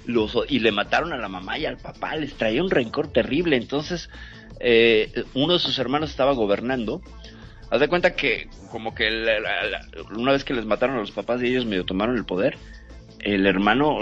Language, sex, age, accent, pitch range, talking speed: Spanish, male, 50-69, Mexican, 90-125 Hz, 205 wpm